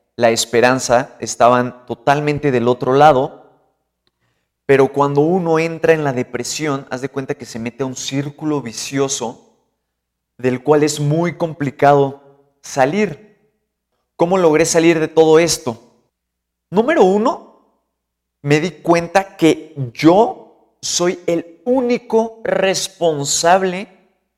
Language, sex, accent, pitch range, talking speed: Spanish, male, Mexican, 125-170 Hz, 115 wpm